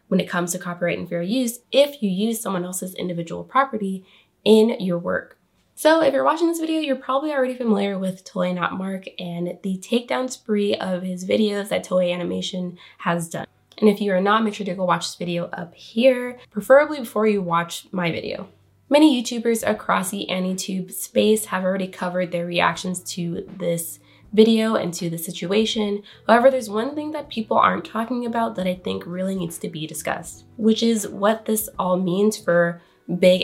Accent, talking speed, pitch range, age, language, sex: American, 195 wpm, 180-225 Hz, 20-39, English, female